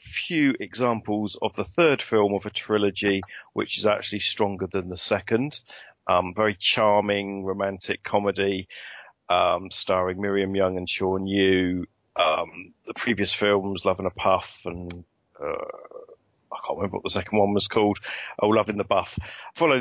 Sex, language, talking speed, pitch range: male, English, 160 wpm, 95-110 Hz